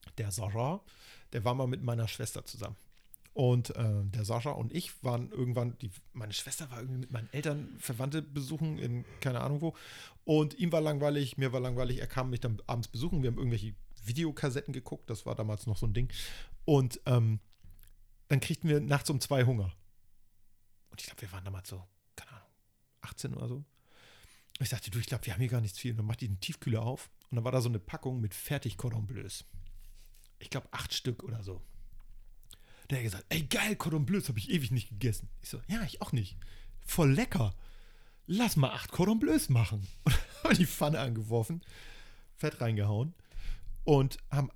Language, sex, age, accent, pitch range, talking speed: German, male, 40-59, German, 105-145 Hz, 195 wpm